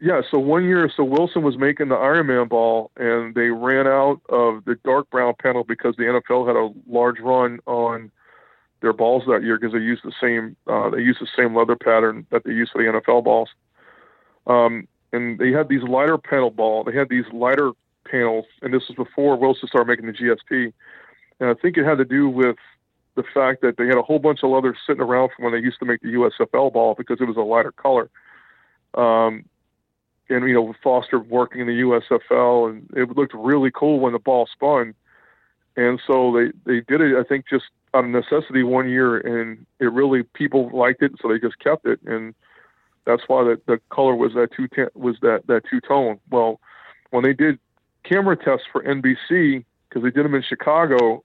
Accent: American